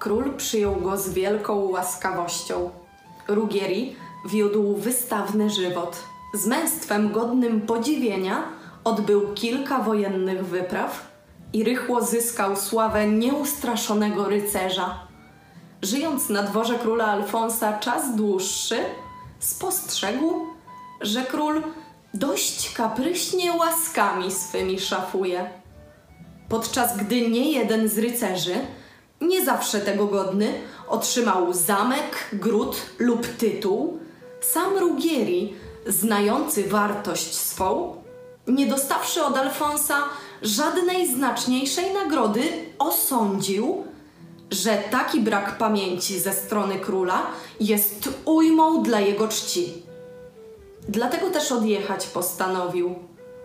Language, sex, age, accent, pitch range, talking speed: Polish, female, 20-39, native, 195-260 Hz, 95 wpm